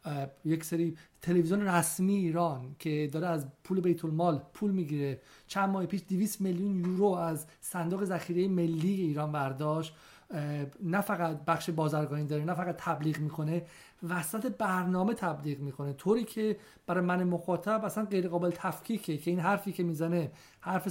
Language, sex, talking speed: Persian, male, 150 wpm